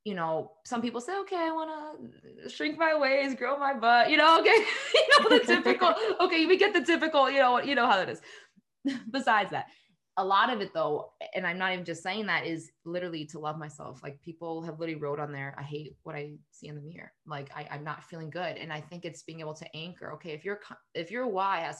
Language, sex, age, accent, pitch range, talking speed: English, female, 20-39, American, 150-175 Hz, 245 wpm